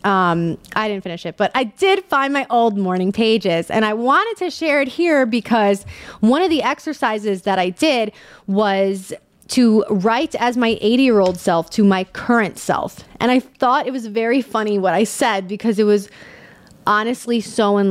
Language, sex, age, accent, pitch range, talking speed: English, female, 20-39, American, 185-245 Hz, 185 wpm